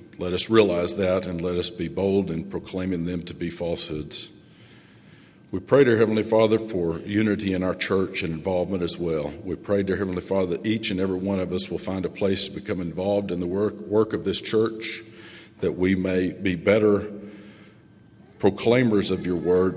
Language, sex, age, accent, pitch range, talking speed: English, male, 50-69, American, 90-105 Hz, 195 wpm